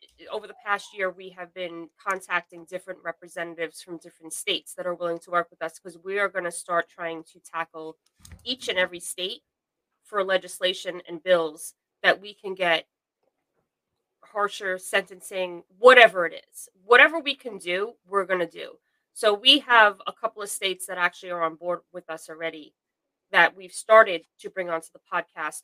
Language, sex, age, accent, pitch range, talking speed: English, female, 20-39, American, 170-215 Hz, 180 wpm